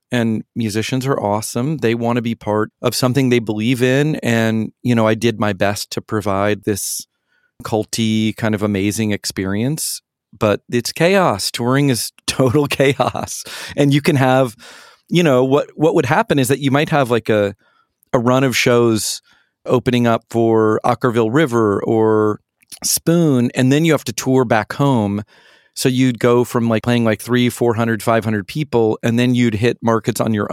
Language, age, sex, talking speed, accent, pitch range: English, 40-59, male, 175 wpm, American, 105-130 Hz